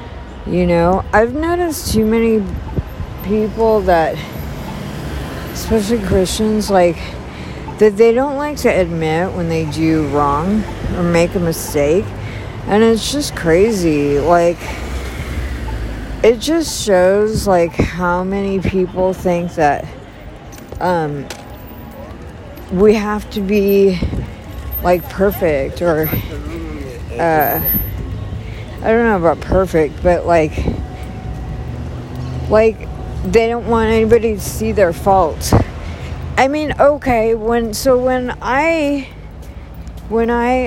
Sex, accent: female, American